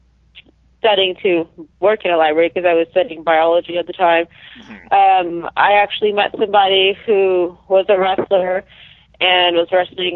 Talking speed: 155 wpm